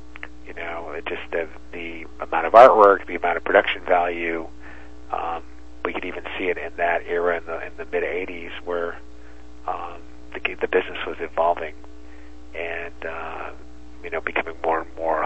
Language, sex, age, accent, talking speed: English, male, 50-69, American, 175 wpm